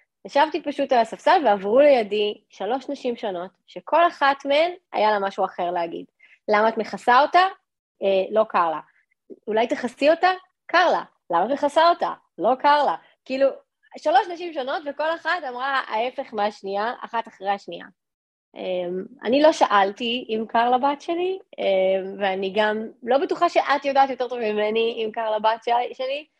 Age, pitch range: 20-39, 210-285 Hz